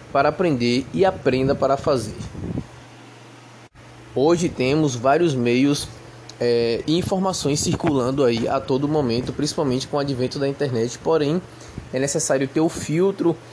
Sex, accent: male, Brazilian